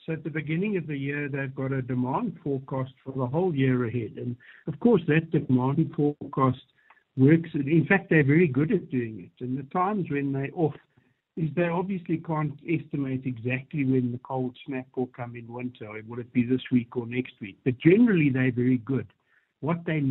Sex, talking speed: male, 205 wpm